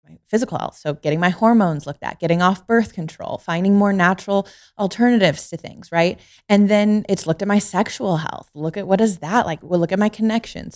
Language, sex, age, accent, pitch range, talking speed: English, female, 20-39, American, 165-220 Hz, 205 wpm